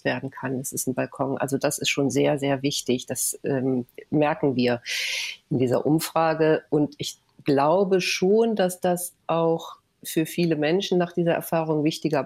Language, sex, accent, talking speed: German, female, German, 165 wpm